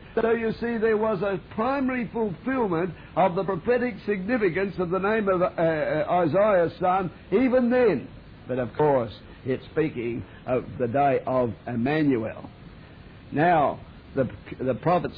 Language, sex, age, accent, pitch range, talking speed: English, male, 60-79, British, 140-225 Hz, 140 wpm